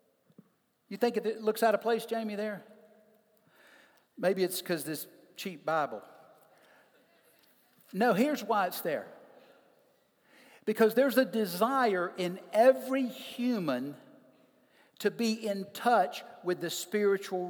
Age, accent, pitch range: 60-79, American, 185-235 Hz